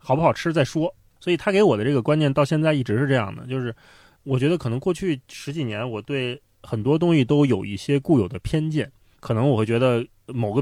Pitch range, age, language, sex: 110-145 Hz, 20-39, Chinese, male